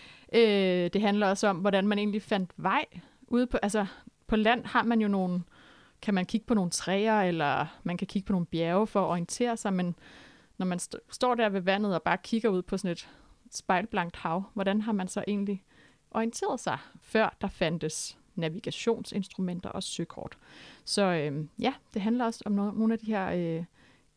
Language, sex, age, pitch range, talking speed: Danish, female, 30-49, 180-220 Hz, 195 wpm